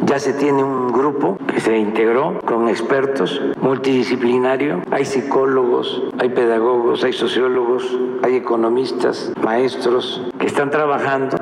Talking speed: 120 wpm